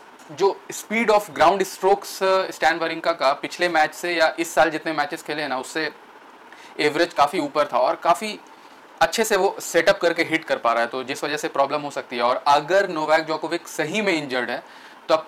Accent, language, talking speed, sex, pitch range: native, Hindi, 210 wpm, male, 135-165 Hz